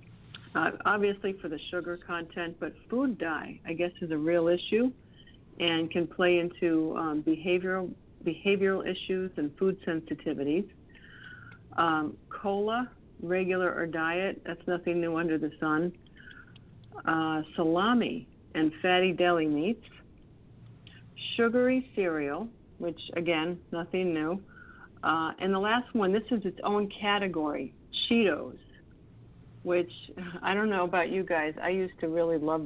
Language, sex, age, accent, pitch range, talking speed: English, female, 50-69, American, 165-195 Hz, 130 wpm